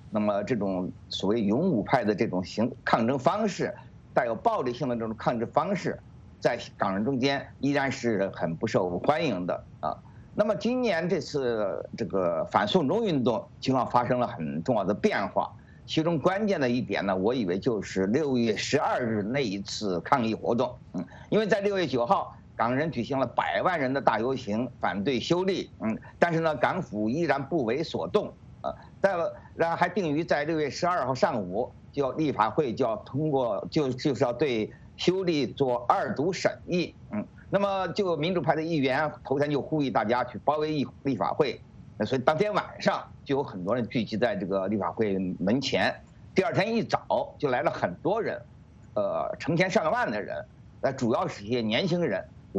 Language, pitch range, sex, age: English, 115-170 Hz, male, 50-69